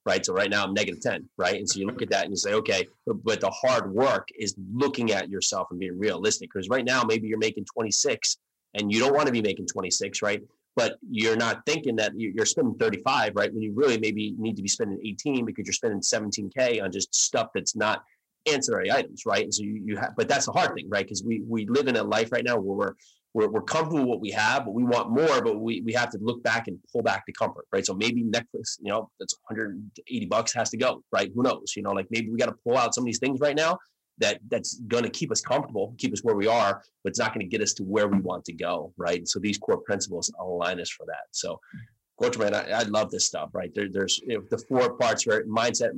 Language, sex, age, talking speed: English, male, 30-49, 265 wpm